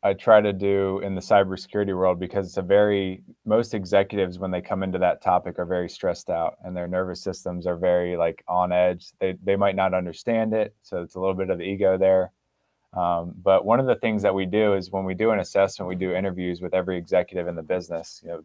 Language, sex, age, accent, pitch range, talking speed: English, male, 20-39, American, 90-100 Hz, 235 wpm